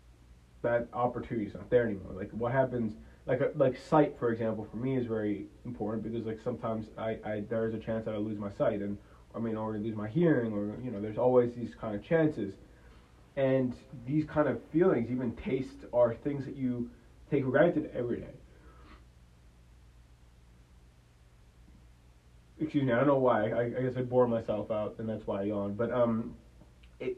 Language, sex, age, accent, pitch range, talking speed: English, male, 20-39, American, 100-125 Hz, 190 wpm